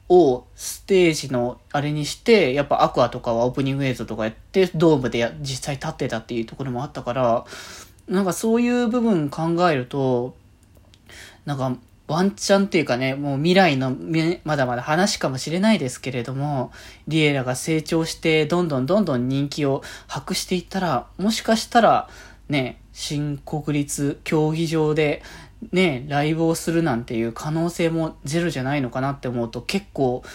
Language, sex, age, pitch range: Japanese, male, 20-39, 125-170 Hz